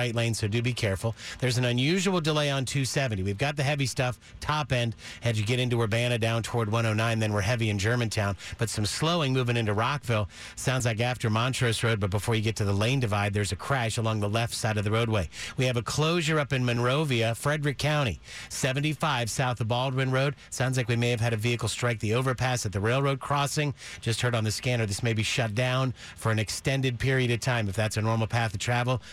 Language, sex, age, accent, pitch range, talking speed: English, male, 50-69, American, 110-130 Hz, 230 wpm